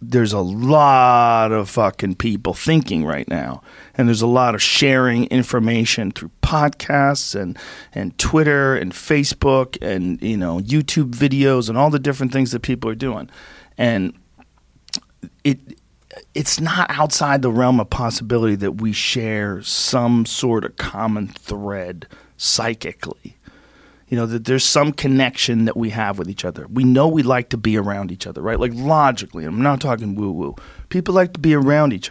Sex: male